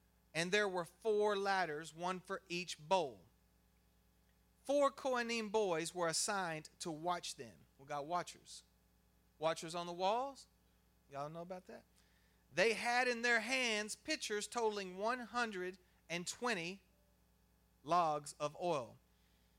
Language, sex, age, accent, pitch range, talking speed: English, male, 40-59, American, 140-210 Hz, 120 wpm